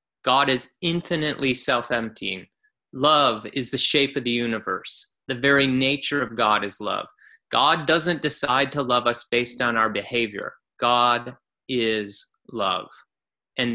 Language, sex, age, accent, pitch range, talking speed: English, male, 30-49, American, 110-140 Hz, 140 wpm